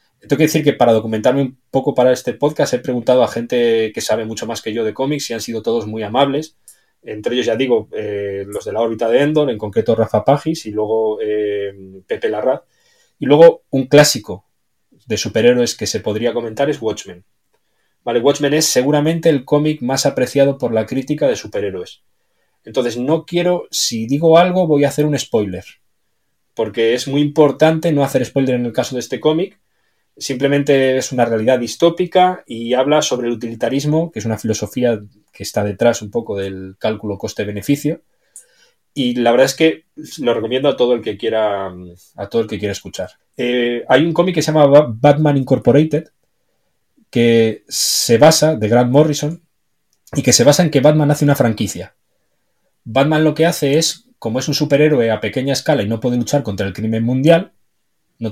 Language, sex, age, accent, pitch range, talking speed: Spanish, male, 20-39, Spanish, 115-150 Hz, 190 wpm